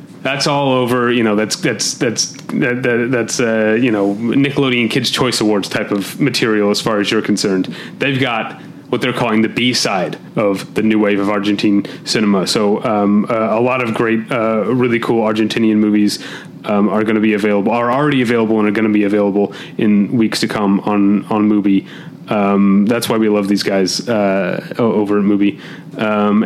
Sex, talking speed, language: male, 195 wpm, English